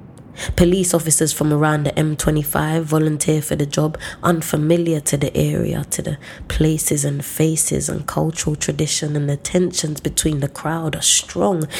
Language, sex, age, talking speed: English, female, 20-39, 155 wpm